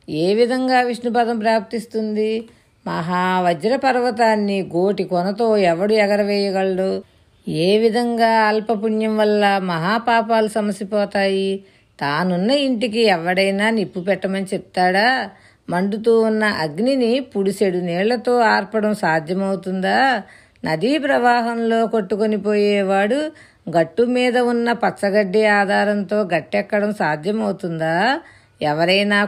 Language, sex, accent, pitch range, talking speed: Telugu, female, native, 190-230 Hz, 80 wpm